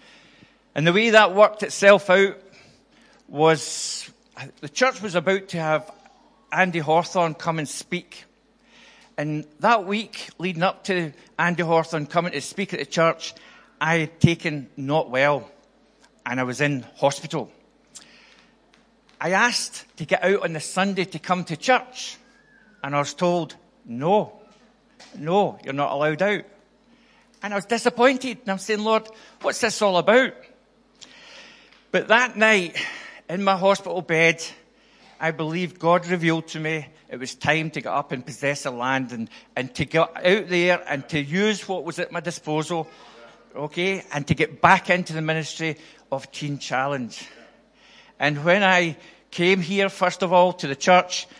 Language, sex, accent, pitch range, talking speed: English, male, British, 155-200 Hz, 160 wpm